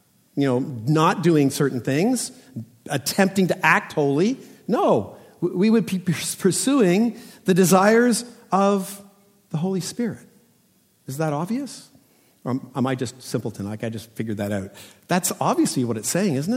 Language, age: English, 50-69